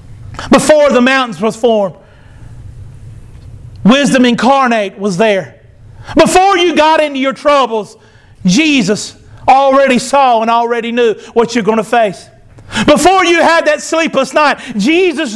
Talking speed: 135 wpm